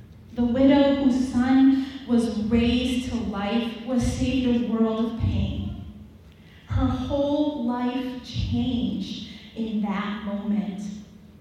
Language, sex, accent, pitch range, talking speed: English, female, American, 225-280 Hz, 110 wpm